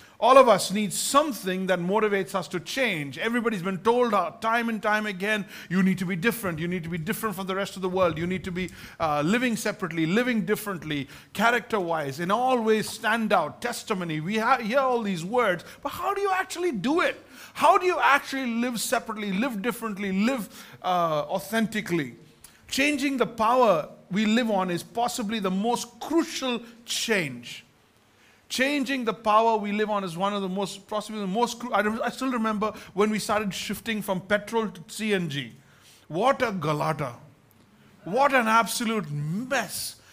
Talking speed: 175 wpm